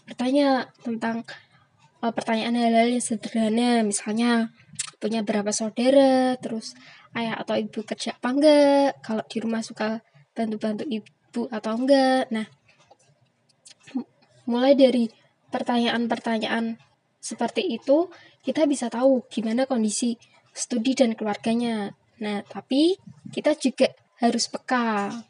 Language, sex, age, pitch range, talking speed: Indonesian, female, 20-39, 225-265 Hz, 110 wpm